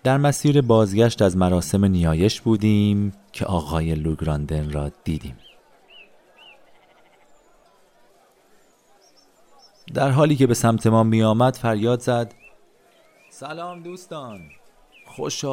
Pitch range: 85-115 Hz